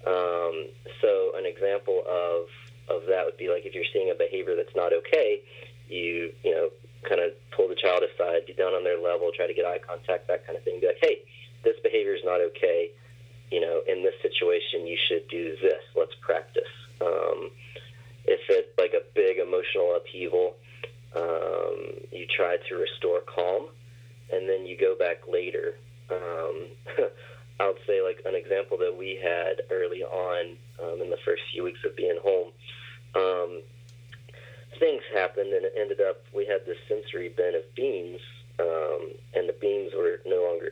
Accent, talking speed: American, 175 wpm